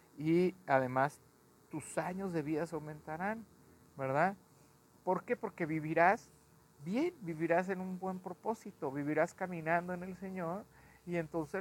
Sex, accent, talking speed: male, Mexican, 135 wpm